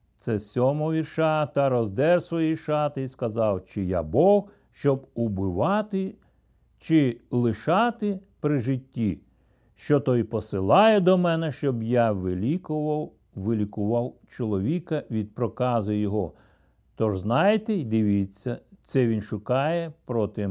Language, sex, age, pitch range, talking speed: Ukrainian, male, 60-79, 105-150 Hz, 110 wpm